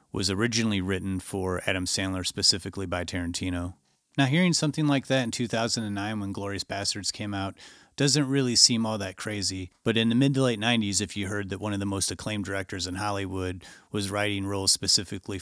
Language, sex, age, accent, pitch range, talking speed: English, male, 30-49, American, 95-110 Hz, 195 wpm